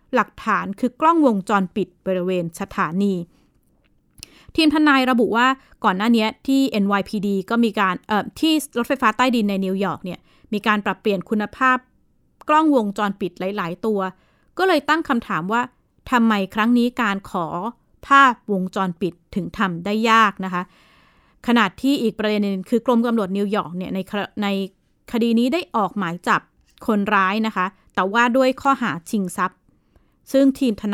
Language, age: Thai, 20-39